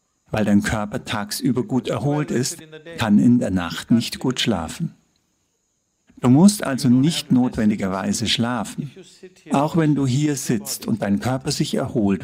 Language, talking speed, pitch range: English, 145 wpm, 115-150 Hz